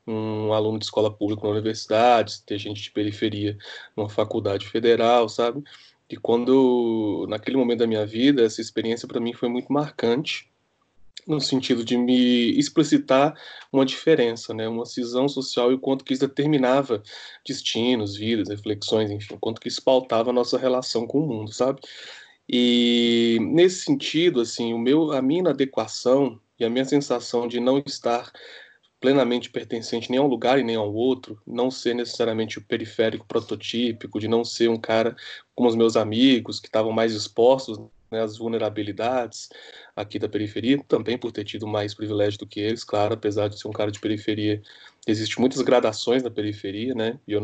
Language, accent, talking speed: Portuguese, Brazilian, 175 wpm